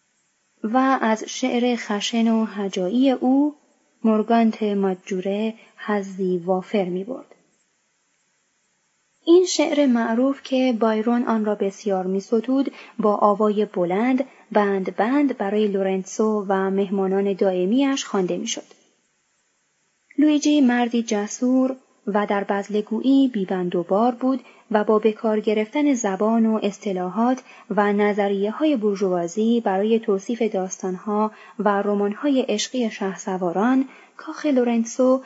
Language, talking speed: Persian, 110 wpm